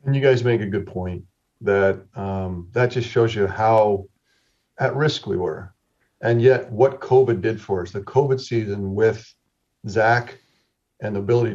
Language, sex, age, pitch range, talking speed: English, male, 40-59, 100-115 Hz, 170 wpm